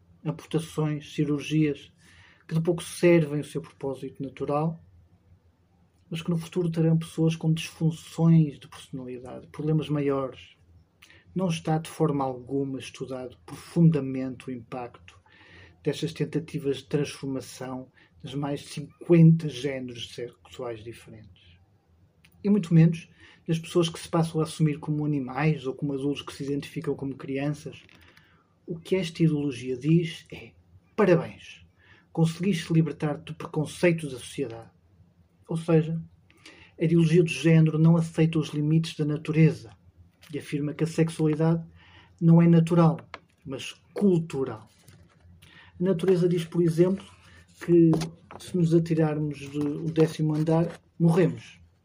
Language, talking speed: Portuguese, 125 wpm